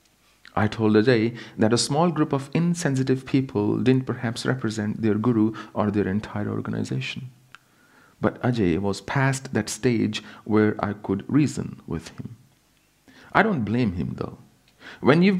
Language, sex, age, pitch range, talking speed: English, male, 50-69, 105-140 Hz, 150 wpm